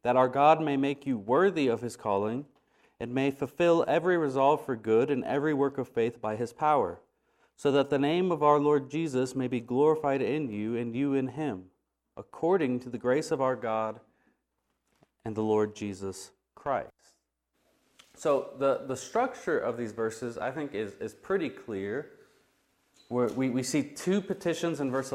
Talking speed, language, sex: 175 wpm, English, male